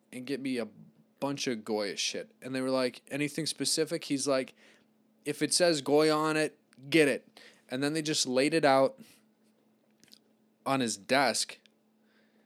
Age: 20-39